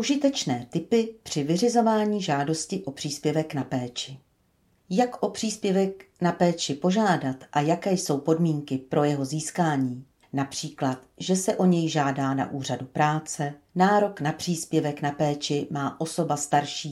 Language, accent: Czech, native